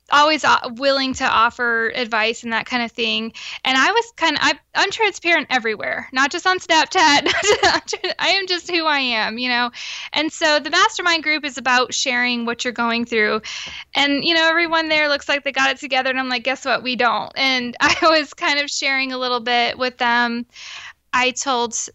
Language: English